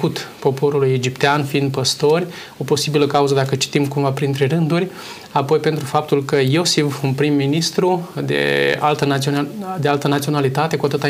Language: Romanian